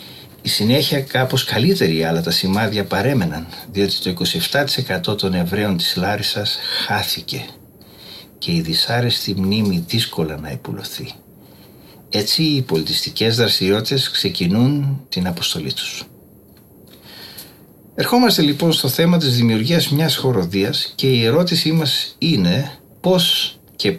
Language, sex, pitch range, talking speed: Greek, male, 100-150 Hz, 115 wpm